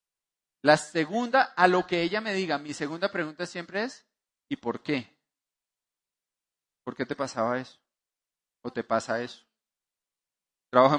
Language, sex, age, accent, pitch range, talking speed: Spanish, male, 30-49, Colombian, 145-195 Hz, 140 wpm